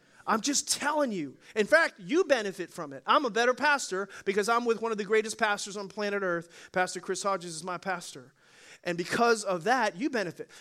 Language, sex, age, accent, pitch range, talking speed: English, male, 30-49, American, 205-265 Hz, 210 wpm